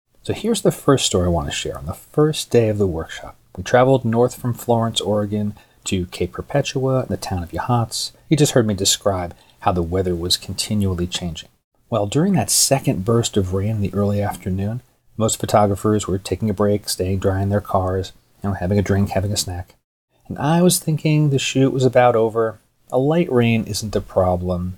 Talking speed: 210 wpm